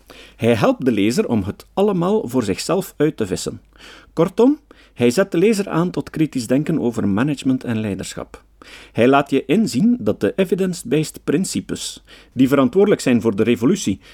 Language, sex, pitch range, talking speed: Dutch, male, 115-185 Hz, 165 wpm